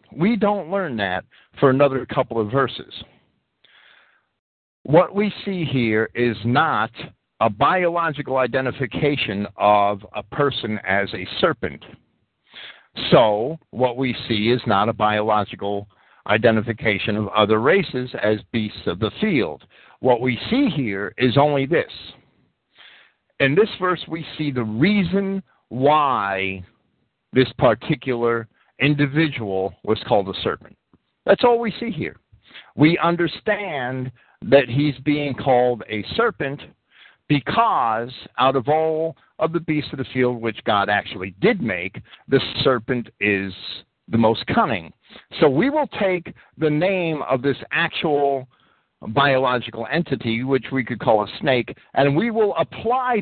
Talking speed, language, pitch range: 135 wpm, English, 115-170 Hz